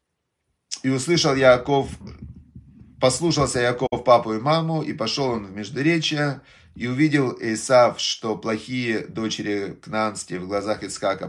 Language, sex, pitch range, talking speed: Russian, male, 115-145 Hz, 120 wpm